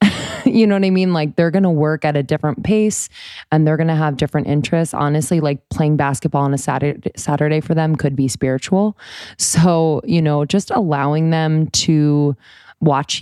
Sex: female